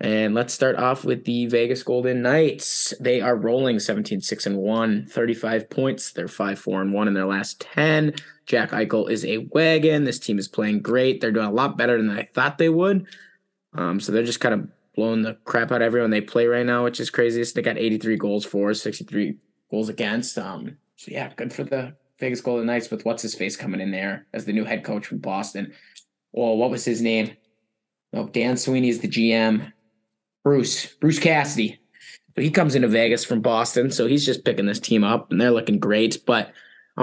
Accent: American